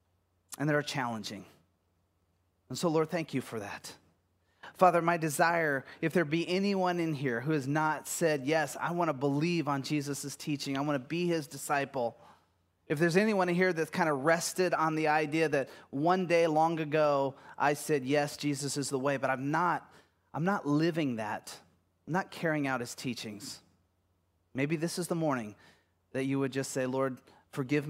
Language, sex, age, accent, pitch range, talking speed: English, male, 30-49, American, 120-160 Hz, 185 wpm